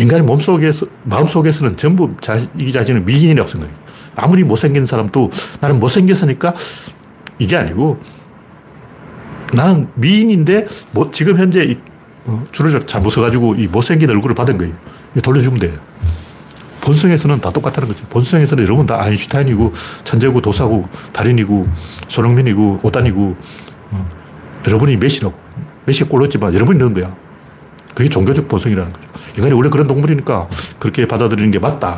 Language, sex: Korean, male